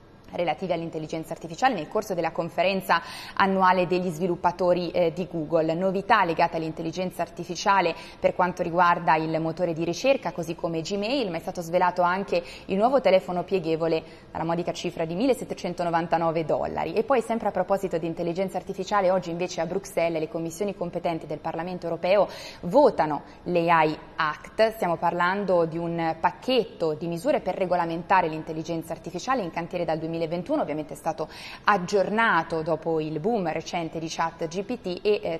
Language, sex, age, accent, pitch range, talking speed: Italian, female, 20-39, native, 165-190 Hz, 155 wpm